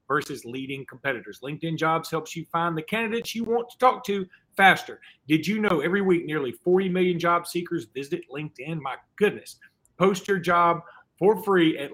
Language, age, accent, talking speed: English, 40-59, American, 180 wpm